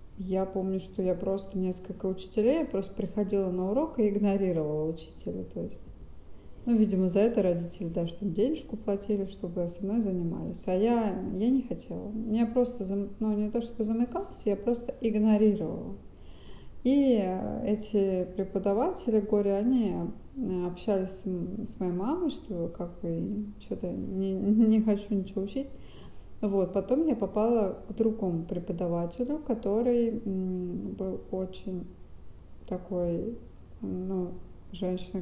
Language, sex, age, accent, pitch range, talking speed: Russian, female, 30-49, native, 180-220 Hz, 135 wpm